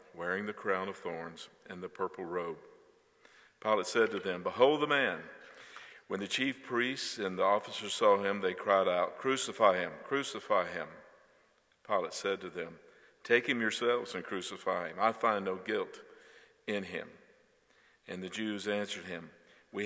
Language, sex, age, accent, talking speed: English, male, 50-69, American, 165 wpm